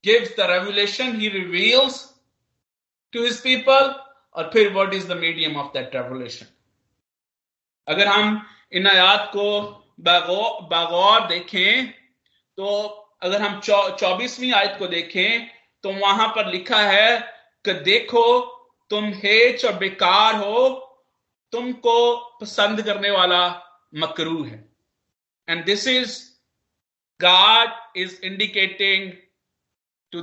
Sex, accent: male, native